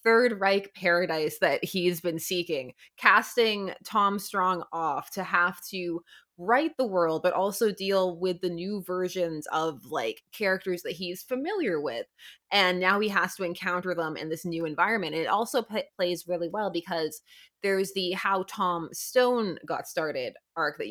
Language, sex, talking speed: English, female, 165 wpm